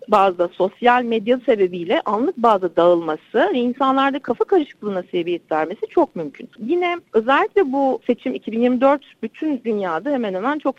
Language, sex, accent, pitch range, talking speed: Turkish, female, native, 210-295 Hz, 145 wpm